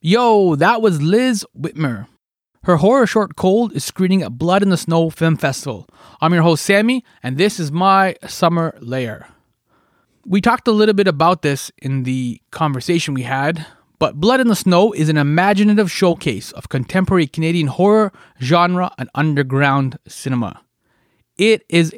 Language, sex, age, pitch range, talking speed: English, male, 20-39, 150-200 Hz, 160 wpm